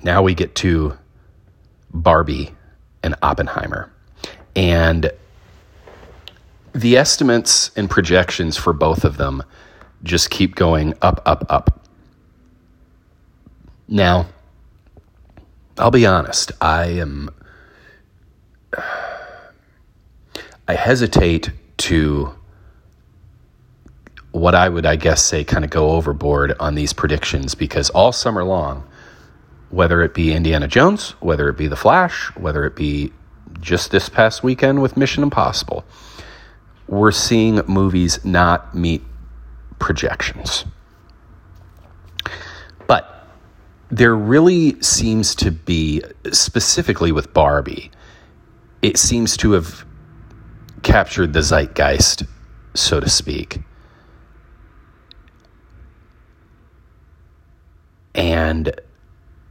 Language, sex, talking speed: English, male, 95 wpm